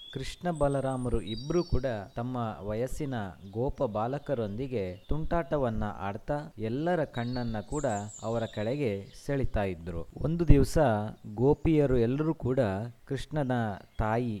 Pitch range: 110-140 Hz